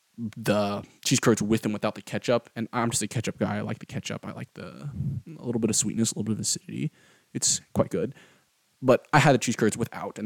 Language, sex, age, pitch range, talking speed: English, male, 20-39, 110-130 Hz, 245 wpm